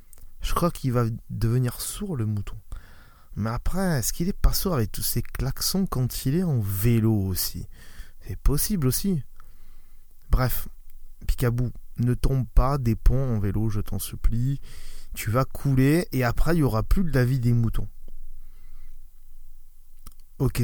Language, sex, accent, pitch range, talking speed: French, male, French, 105-145 Hz, 160 wpm